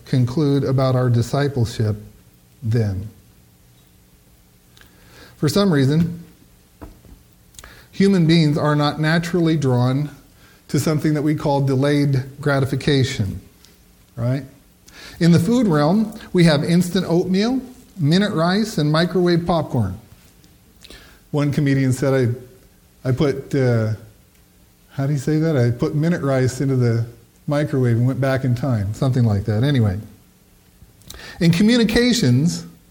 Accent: American